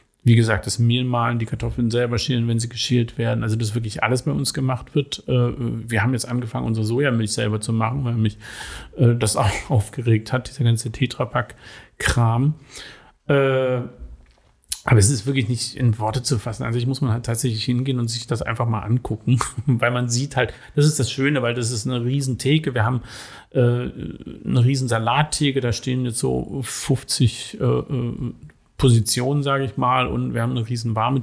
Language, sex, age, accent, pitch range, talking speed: German, male, 40-59, German, 115-130 Hz, 185 wpm